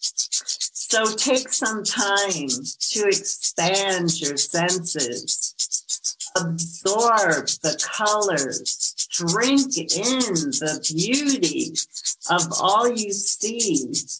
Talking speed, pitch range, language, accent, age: 80 wpm, 155-220 Hz, English, American, 50-69